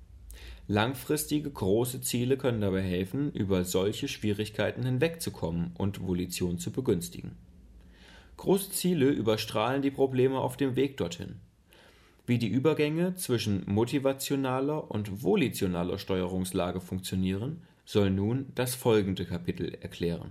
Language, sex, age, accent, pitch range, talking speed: German, male, 30-49, German, 95-130 Hz, 110 wpm